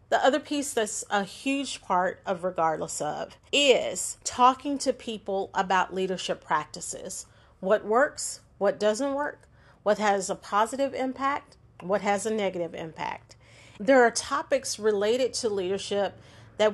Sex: female